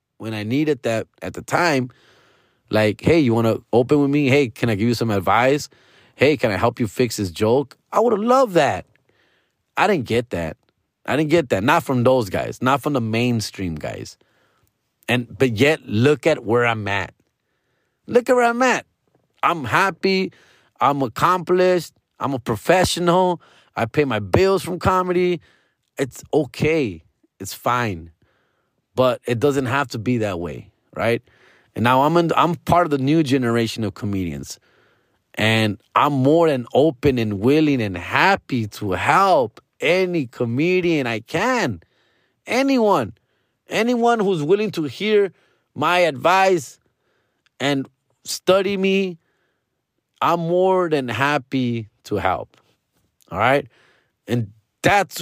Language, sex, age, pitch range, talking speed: English, male, 30-49, 115-170 Hz, 150 wpm